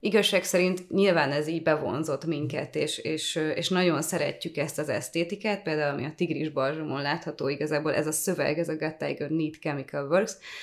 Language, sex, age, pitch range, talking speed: Hungarian, female, 20-39, 150-175 Hz, 170 wpm